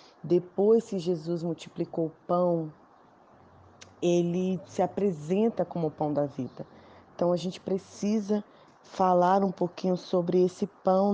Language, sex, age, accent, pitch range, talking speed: Portuguese, female, 20-39, Brazilian, 165-200 Hz, 130 wpm